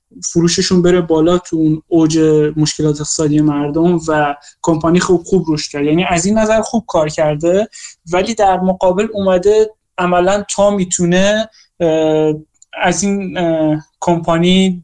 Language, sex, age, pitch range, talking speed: Persian, male, 20-39, 160-185 Hz, 120 wpm